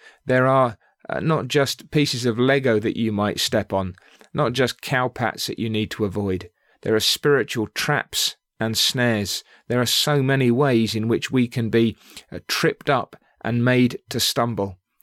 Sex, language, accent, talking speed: male, English, British, 180 wpm